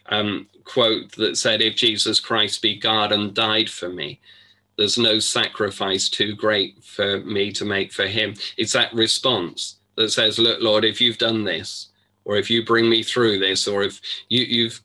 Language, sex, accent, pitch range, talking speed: English, male, British, 95-105 Hz, 180 wpm